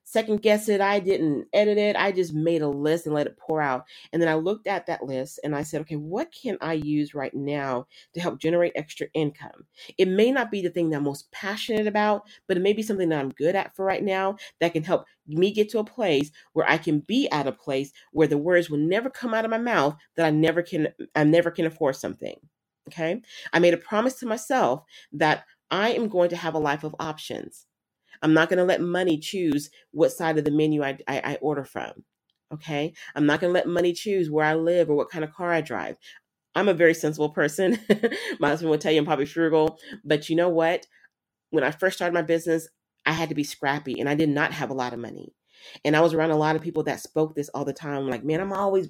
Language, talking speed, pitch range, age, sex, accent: English, 250 wpm, 150-195 Hz, 40-59, female, American